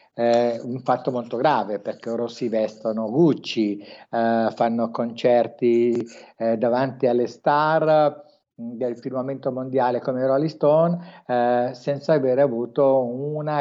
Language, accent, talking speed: Italian, native, 125 wpm